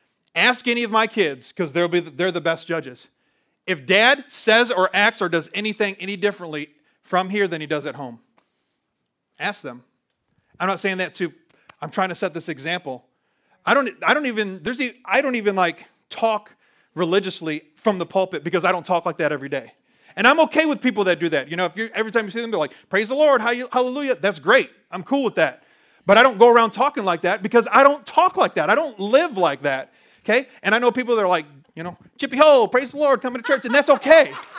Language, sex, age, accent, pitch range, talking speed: English, male, 30-49, American, 180-255 Hz, 235 wpm